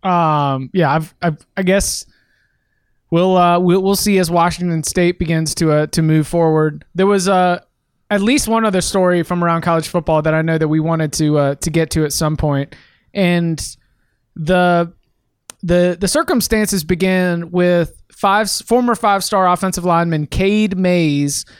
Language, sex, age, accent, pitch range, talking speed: English, male, 20-39, American, 160-195 Hz, 165 wpm